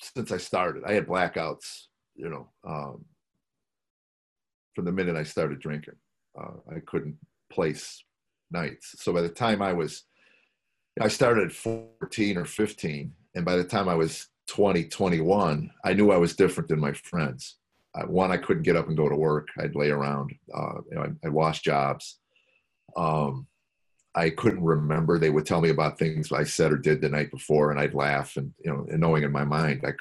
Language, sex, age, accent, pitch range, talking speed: English, male, 40-59, American, 75-90 Hz, 190 wpm